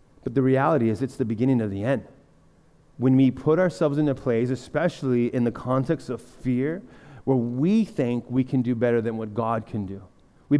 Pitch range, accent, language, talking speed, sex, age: 140-195 Hz, American, English, 205 wpm, male, 30-49